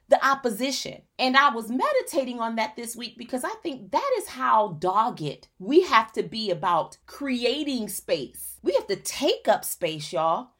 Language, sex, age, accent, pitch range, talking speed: English, female, 30-49, American, 180-270 Hz, 175 wpm